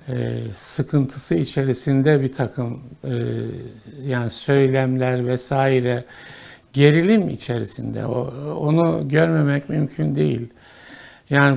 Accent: native